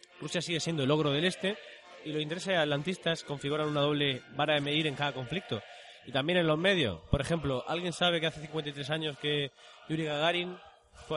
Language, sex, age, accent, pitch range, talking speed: Spanish, male, 20-39, Spanish, 125-165 Hz, 200 wpm